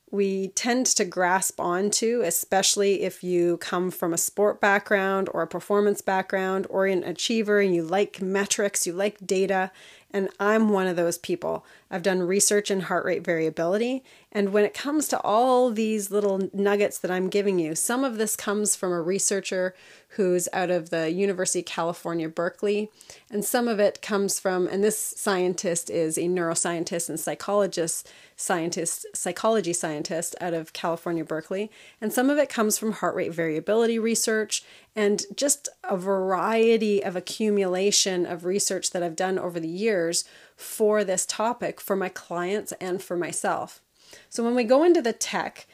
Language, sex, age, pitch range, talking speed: English, female, 30-49, 180-215 Hz, 170 wpm